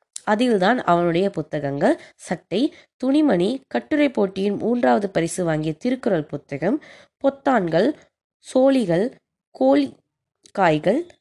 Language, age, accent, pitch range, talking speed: Tamil, 20-39, native, 170-250 Hz, 80 wpm